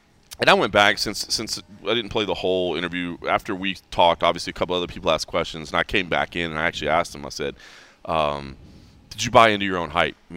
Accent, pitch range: American, 105-150 Hz